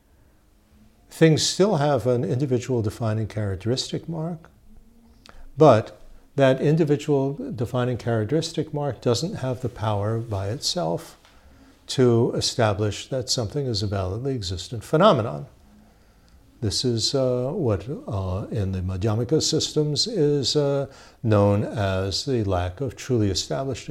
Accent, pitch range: American, 105-145 Hz